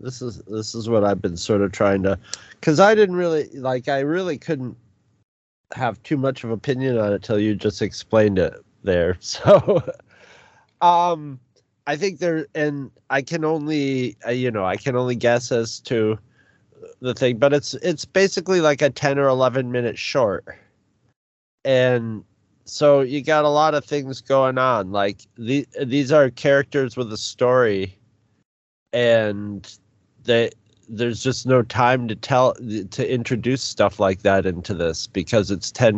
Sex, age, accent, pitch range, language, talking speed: male, 30-49, American, 105-135 Hz, English, 165 wpm